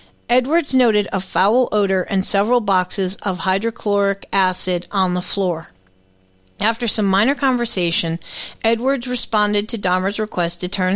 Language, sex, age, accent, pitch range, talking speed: English, female, 40-59, American, 175-225 Hz, 135 wpm